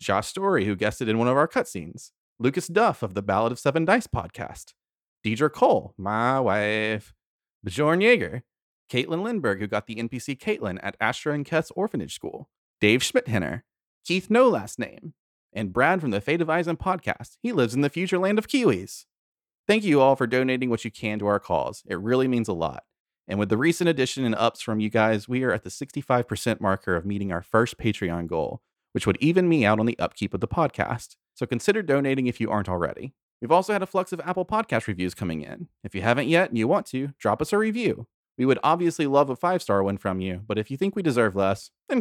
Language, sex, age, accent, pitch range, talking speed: English, male, 30-49, American, 105-165 Hz, 220 wpm